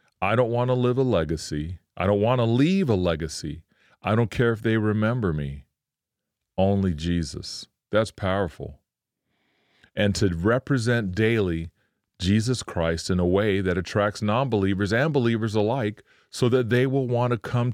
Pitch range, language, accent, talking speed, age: 90-120 Hz, English, American, 160 wpm, 40-59